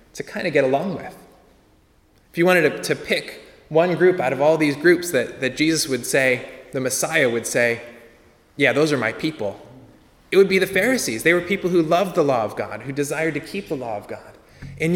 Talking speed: 225 wpm